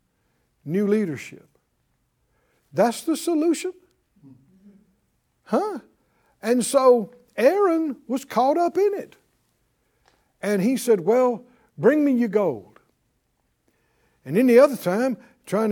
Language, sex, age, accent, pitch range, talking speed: English, male, 60-79, American, 210-285 Hz, 105 wpm